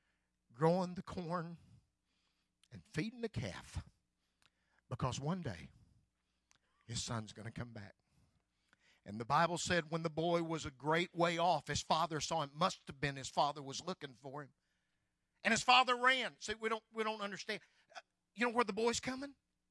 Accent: American